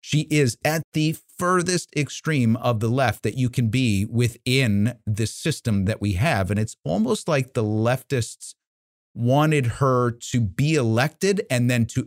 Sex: male